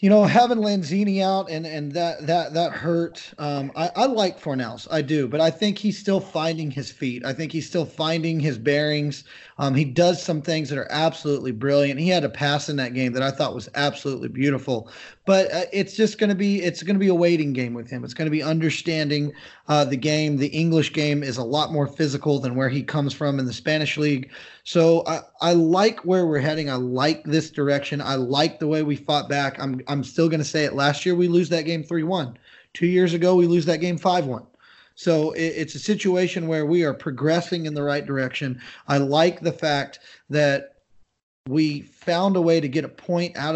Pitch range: 140-170 Hz